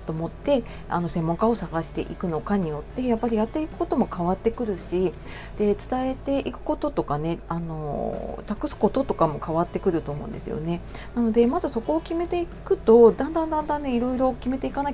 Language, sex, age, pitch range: Japanese, female, 30-49, 165-250 Hz